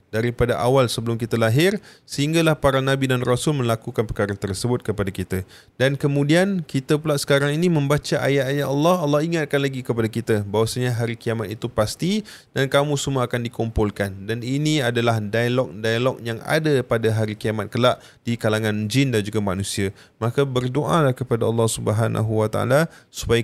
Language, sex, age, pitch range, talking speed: Malay, male, 20-39, 110-130 Hz, 155 wpm